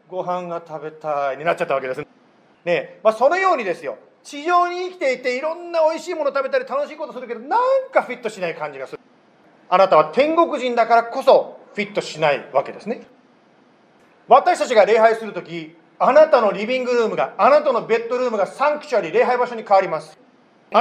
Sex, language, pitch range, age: male, Japanese, 195-290 Hz, 40-59